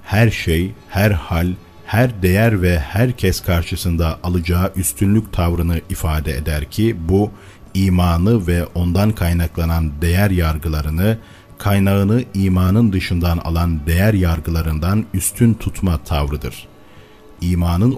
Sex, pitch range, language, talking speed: male, 85-100 Hz, Turkish, 105 wpm